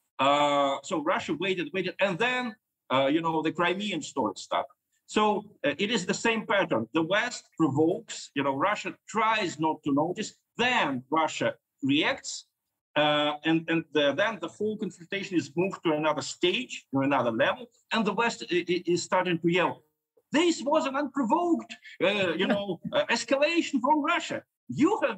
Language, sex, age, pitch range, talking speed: English, male, 50-69, 155-235 Hz, 170 wpm